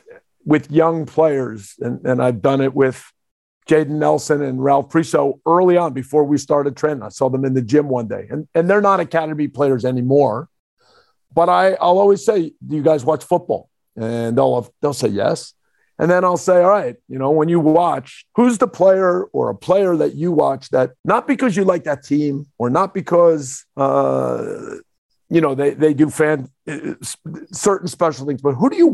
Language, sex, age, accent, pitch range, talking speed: English, male, 50-69, American, 140-190 Hz, 200 wpm